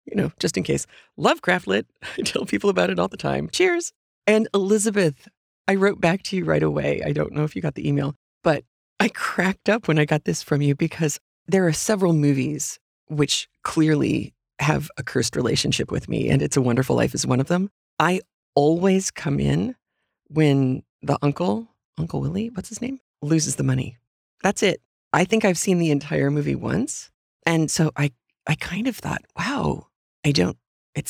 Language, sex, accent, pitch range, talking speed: English, female, American, 145-195 Hz, 195 wpm